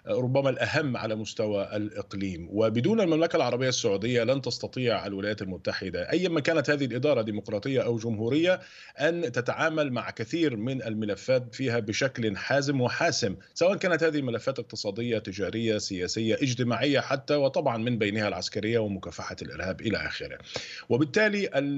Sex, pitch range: male, 110-145 Hz